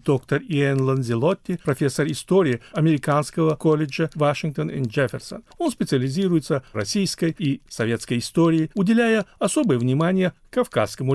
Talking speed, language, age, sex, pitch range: 115 wpm, Russian, 50-69, male, 130-185 Hz